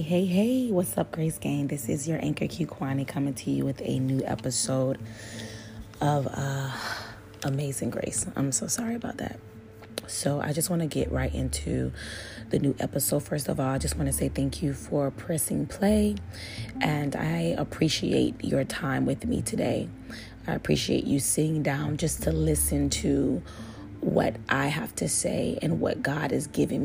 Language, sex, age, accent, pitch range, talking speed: English, female, 30-49, American, 105-145 Hz, 175 wpm